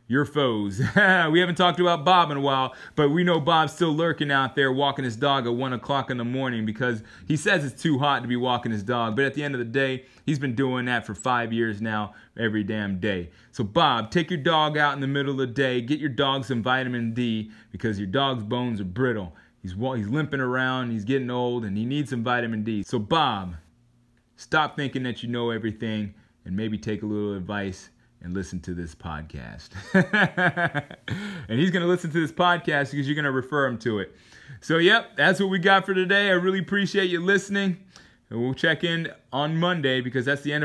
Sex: male